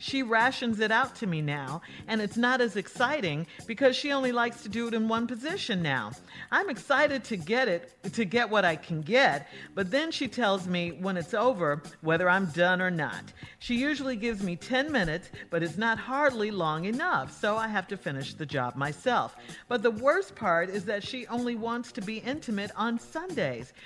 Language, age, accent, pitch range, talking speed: English, 50-69, American, 175-250 Hz, 205 wpm